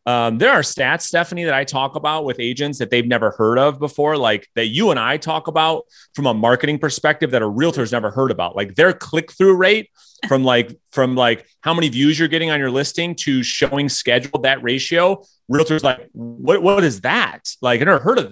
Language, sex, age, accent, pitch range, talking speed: English, male, 30-49, American, 120-160 Hz, 220 wpm